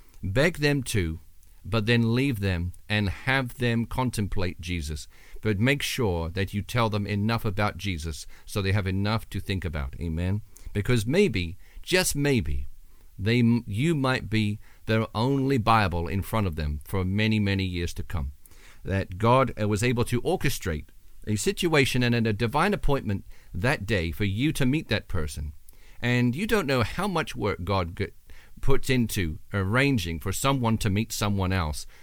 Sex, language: male, English